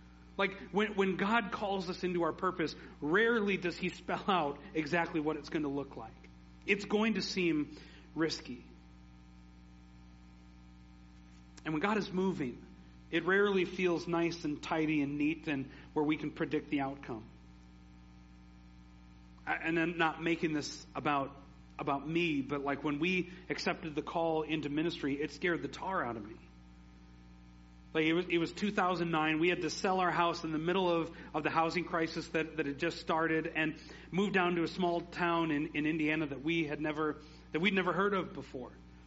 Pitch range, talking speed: 130-180 Hz, 175 wpm